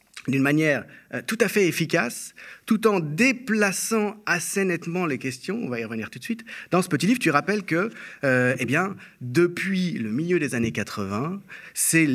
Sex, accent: male, French